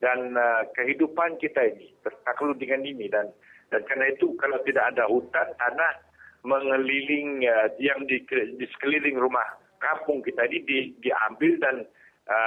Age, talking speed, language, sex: 60-79, 150 wpm, English, male